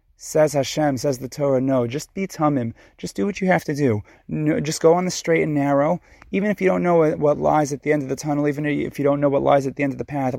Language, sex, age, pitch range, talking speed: English, male, 30-49, 120-145 Hz, 285 wpm